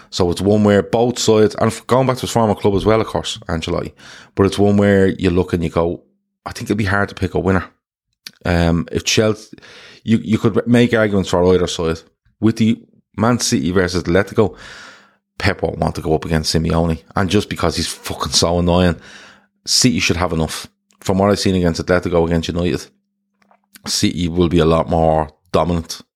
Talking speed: 200 wpm